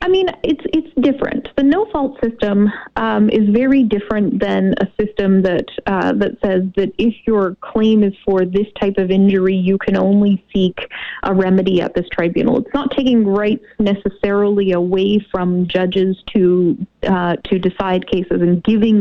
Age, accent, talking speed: 30-49, American, 165 wpm